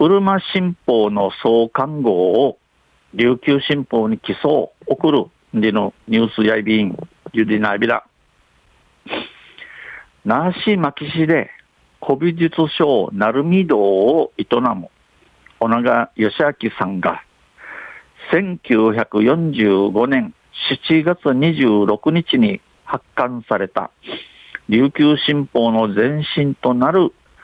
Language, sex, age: Japanese, male, 50-69